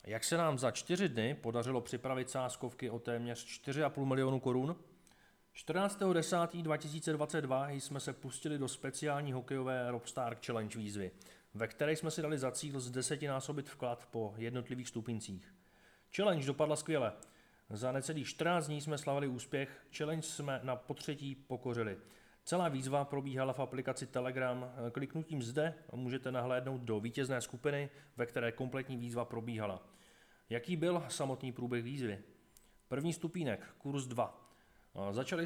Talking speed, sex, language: 140 wpm, male, Czech